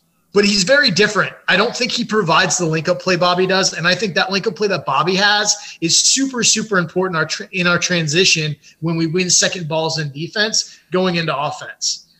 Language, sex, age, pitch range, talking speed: English, male, 20-39, 155-195 Hz, 200 wpm